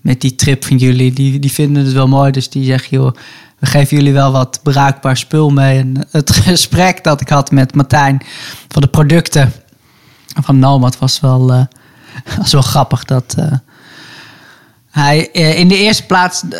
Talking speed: 180 wpm